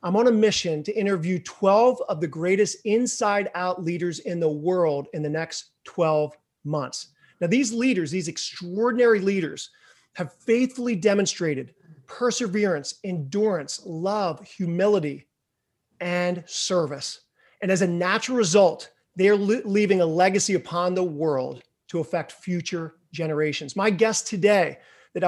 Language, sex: English, male